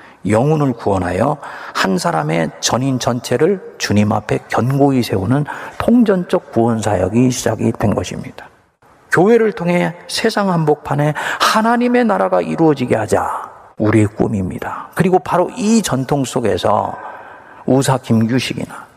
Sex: male